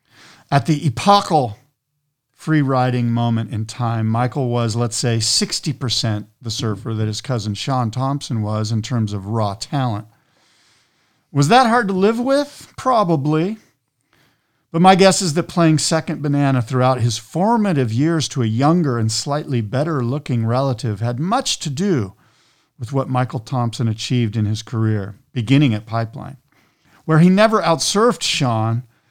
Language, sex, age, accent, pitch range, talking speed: English, male, 50-69, American, 115-155 Hz, 150 wpm